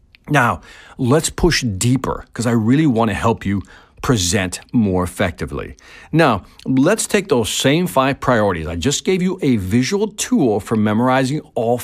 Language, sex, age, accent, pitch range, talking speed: English, male, 50-69, American, 95-160 Hz, 155 wpm